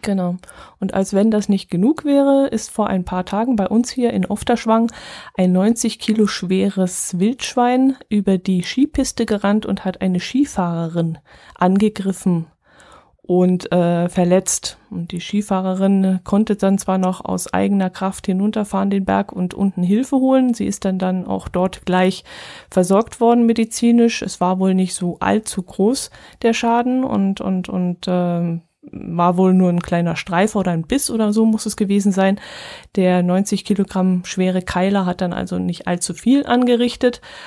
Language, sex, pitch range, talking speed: German, female, 180-210 Hz, 165 wpm